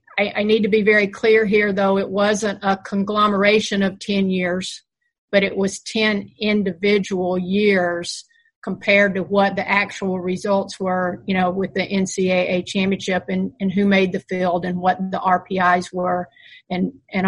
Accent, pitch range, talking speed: American, 185-205 Hz, 165 wpm